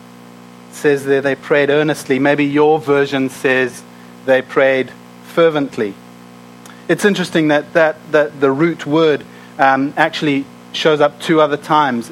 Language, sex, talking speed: English, male, 135 wpm